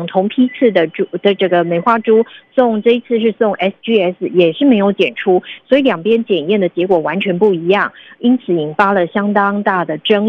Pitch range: 185-235 Hz